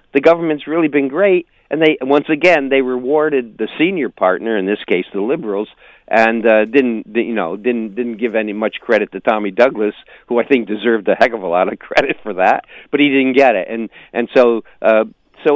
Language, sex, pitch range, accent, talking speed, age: English, male, 105-130 Hz, American, 215 wpm, 50-69